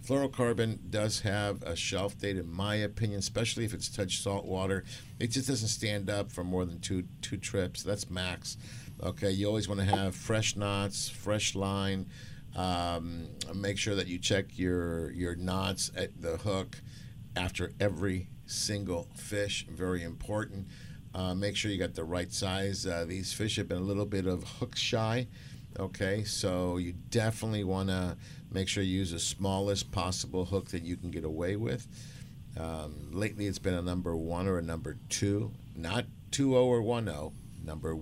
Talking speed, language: 175 wpm, English